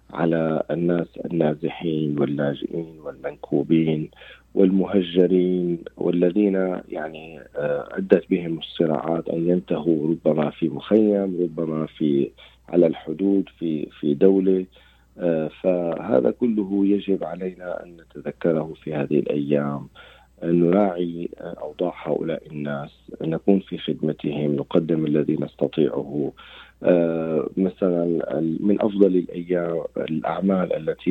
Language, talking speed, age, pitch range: Arabic, 95 wpm, 40-59, 80-95 Hz